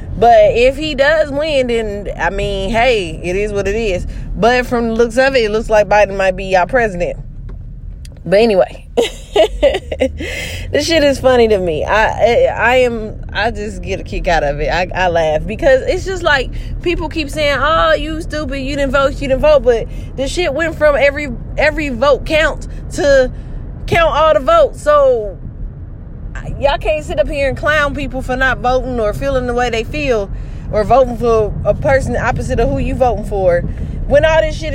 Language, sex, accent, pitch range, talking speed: English, female, American, 215-300 Hz, 195 wpm